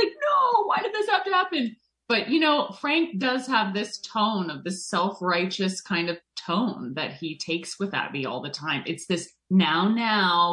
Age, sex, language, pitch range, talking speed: 30-49, female, English, 145-210 Hz, 195 wpm